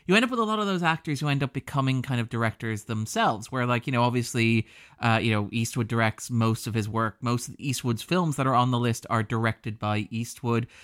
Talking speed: 245 wpm